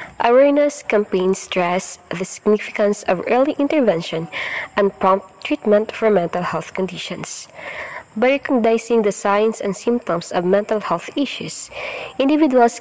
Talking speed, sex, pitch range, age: 120 wpm, female, 180-235 Hz, 20-39